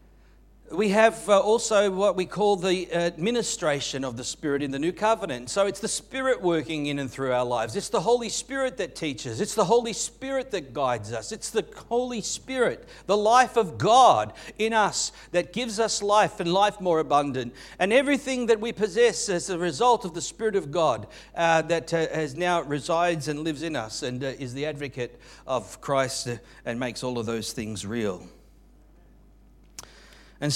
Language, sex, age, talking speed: English, male, 50-69, 180 wpm